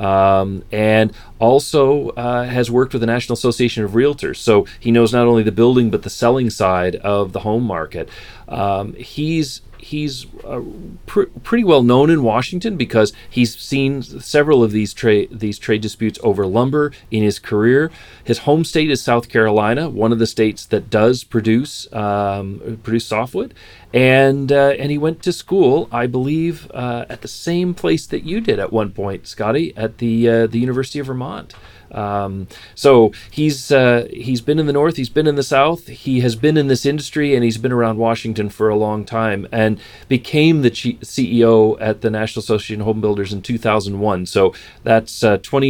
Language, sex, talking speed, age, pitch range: English, male, 185 wpm, 40-59, 110-130 Hz